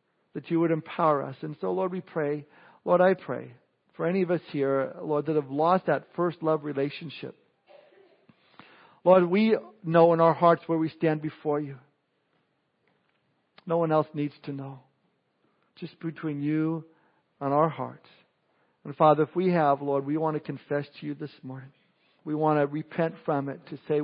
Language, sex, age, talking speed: English, male, 50-69, 175 wpm